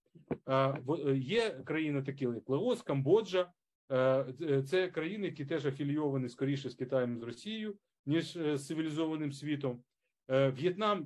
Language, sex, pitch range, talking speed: Ukrainian, male, 135-175 Hz, 115 wpm